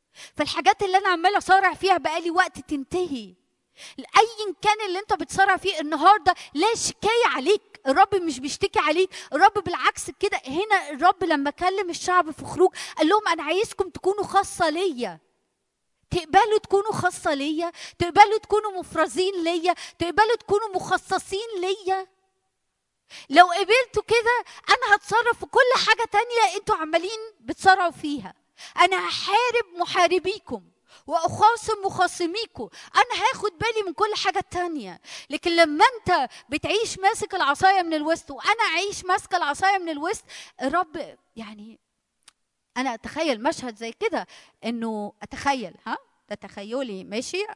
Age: 20-39